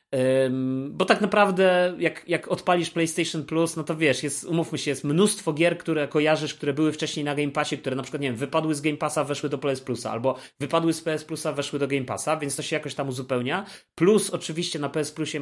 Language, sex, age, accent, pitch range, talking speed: Polish, male, 30-49, native, 130-160 Hz, 225 wpm